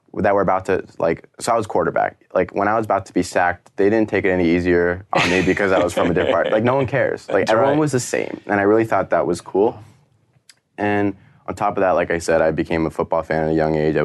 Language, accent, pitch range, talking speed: English, American, 80-105 Hz, 280 wpm